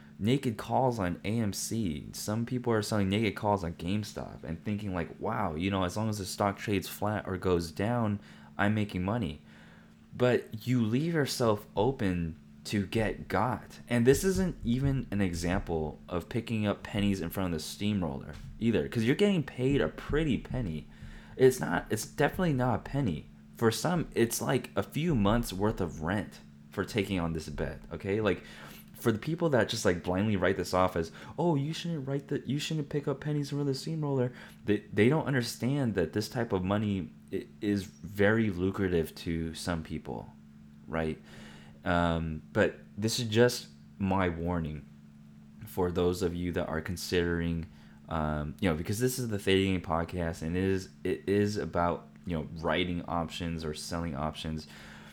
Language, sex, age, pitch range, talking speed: English, male, 20-39, 80-115 Hz, 180 wpm